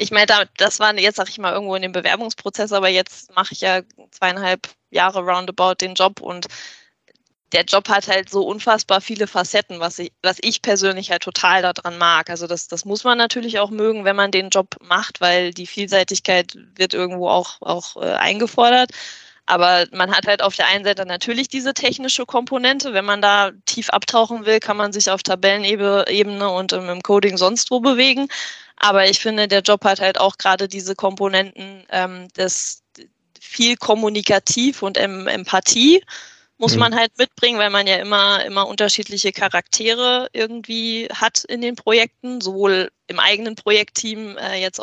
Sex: female